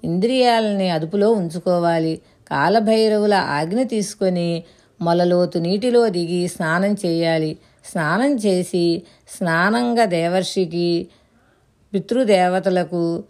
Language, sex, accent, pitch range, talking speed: Telugu, female, native, 170-215 Hz, 70 wpm